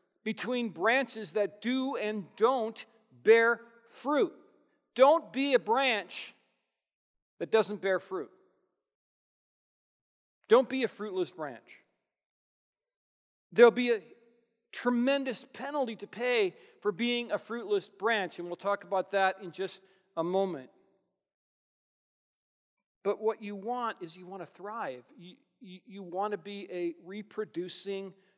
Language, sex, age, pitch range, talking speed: English, male, 40-59, 175-235 Hz, 125 wpm